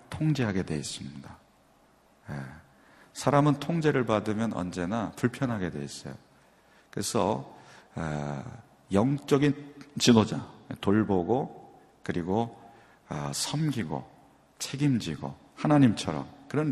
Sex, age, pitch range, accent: male, 40-59, 95-135 Hz, native